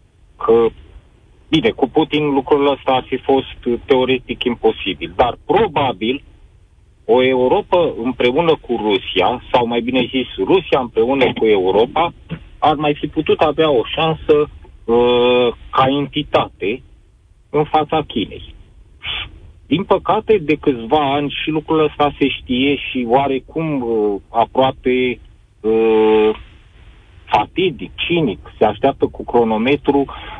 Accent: native